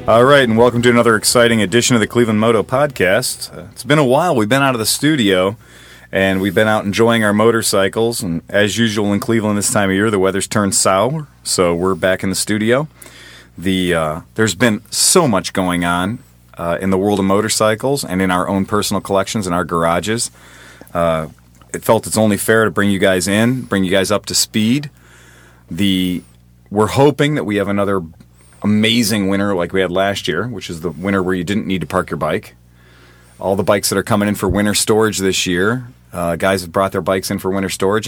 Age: 30-49